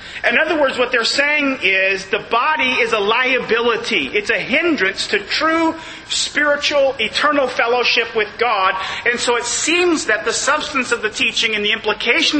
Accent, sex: American, male